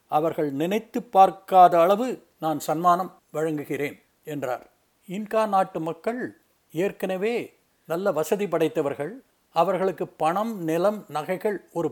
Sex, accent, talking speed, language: male, native, 100 wpm, Tamil